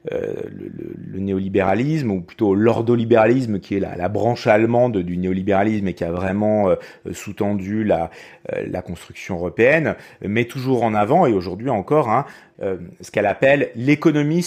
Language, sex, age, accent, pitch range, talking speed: French, male, 40-59, French, 100-150 Hz, 170 wpm